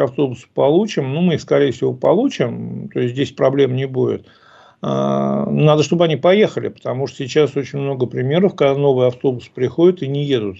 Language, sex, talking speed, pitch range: Russian, male, 175 wpm, 135-185 Hz